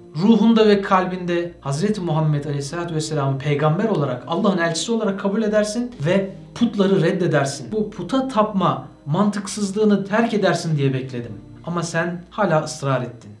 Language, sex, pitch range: Turkish, male, 140-190 Hz